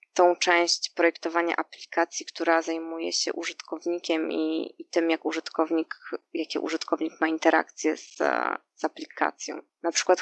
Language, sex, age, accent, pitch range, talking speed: Polish, female, 20-39, native, 165-185 Hz, 130 wpm